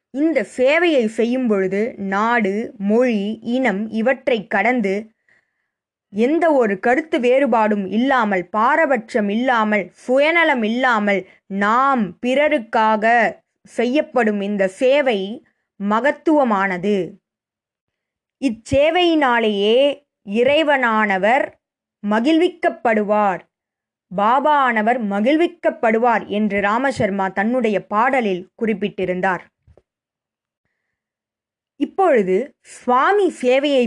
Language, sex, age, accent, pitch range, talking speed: Tamil, female, 20-39, native, 205-270 Hz, 65 wpm